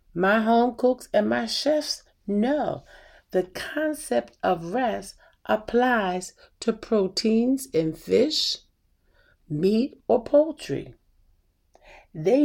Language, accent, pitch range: English, American, 145-235 Hz